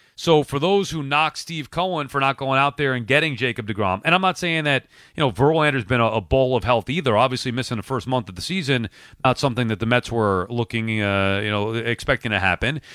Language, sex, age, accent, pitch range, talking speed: English, male, 40-59, American, 120-165 Hz, 235 wpm